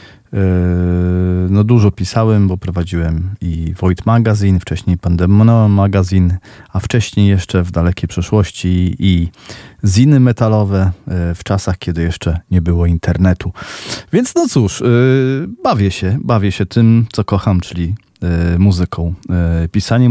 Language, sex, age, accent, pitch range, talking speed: Polish, male, 40-59, native, 90-115 Hz, 120 wpm